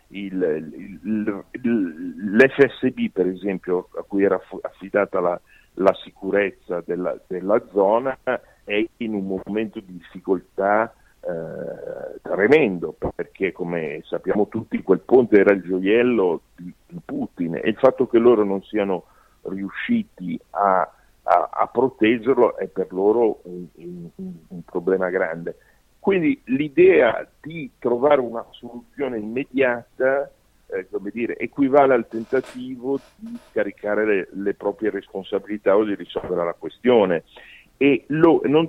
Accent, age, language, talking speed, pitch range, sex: native, 50-69, Italian, 120 wpm, 100-140 Hz, male